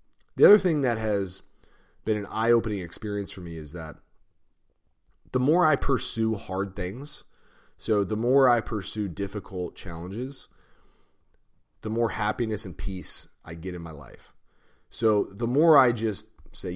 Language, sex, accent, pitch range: English, male, American, 90-115 Hz